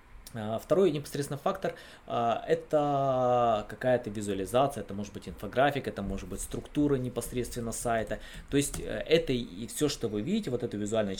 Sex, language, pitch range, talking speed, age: male, Russian, 105-130 Hz, 145 wpm, 20-39